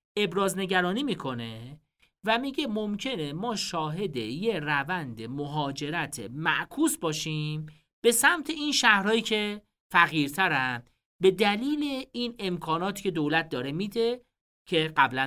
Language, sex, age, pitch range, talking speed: Persian, male, 40-59, 140-195 Hz, 115 wpm